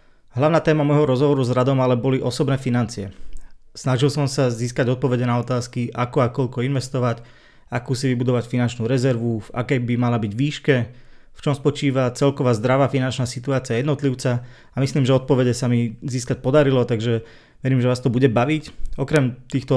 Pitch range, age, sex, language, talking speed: 115-135 Hz, 20-39, male, Slovak, 175 wpm